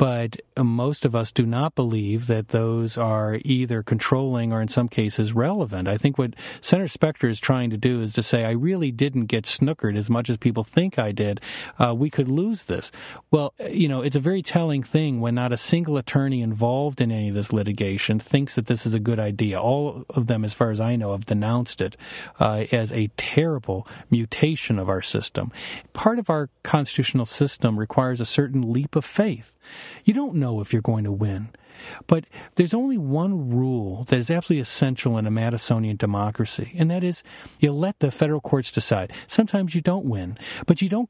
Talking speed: 205 wpm